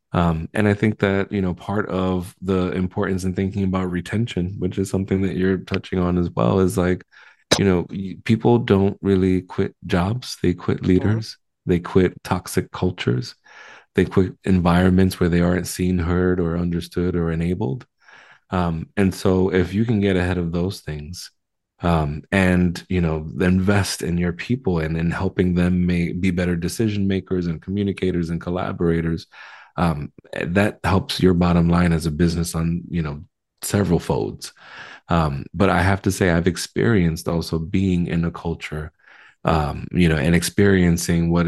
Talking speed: 170 wpm